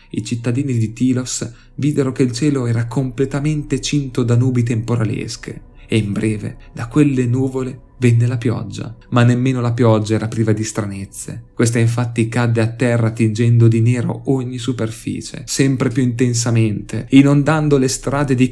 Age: 30-49